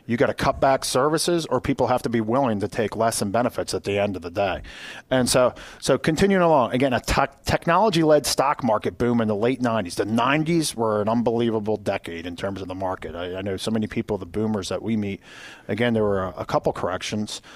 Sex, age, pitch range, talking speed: male, 40-59, 100-130 Hz, 230 wpm